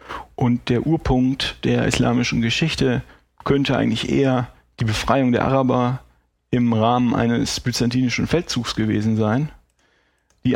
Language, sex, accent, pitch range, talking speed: German, male, German, 115-130 Hz, 120 wpm